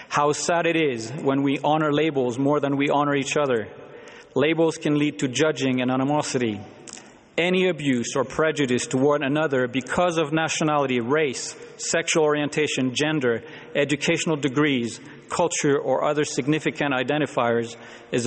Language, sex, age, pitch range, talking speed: English, male, 40-59, 130-155 Hz, 140 wpm